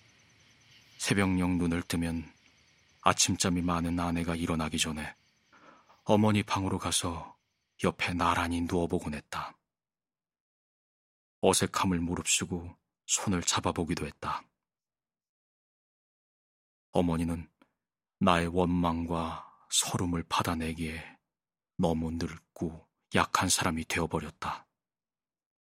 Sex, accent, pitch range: male, native, 85-95 Hz